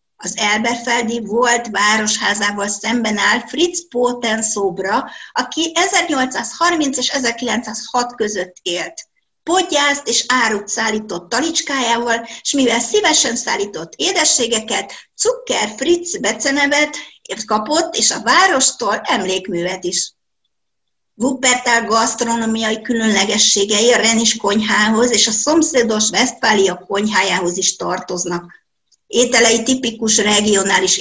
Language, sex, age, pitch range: Hungarian, female, 50-69, 210-260 Hz